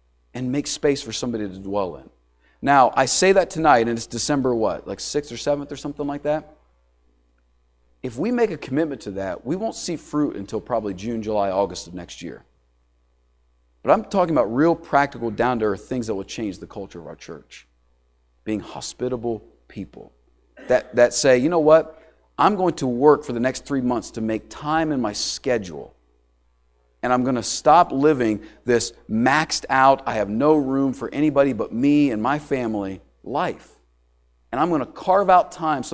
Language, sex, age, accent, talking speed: English, male, 40-59, American, 190 wpm